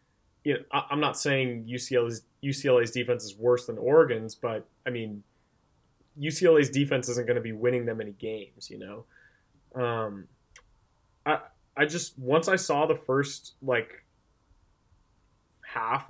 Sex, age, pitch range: male, 20-39, 115-140 Hz